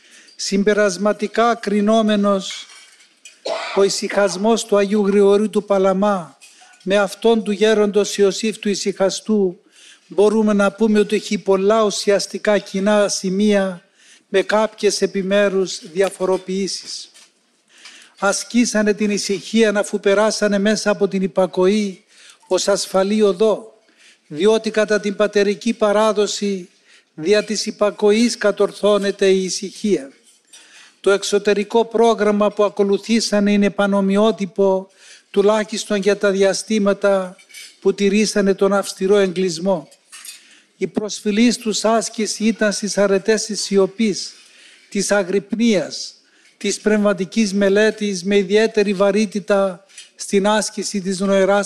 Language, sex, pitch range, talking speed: Greek, male, 195-215 Hz, 105 wpm